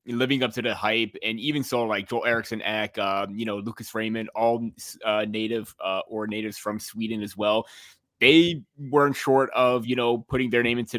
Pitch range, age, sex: 110-125 Hz, 20-39, male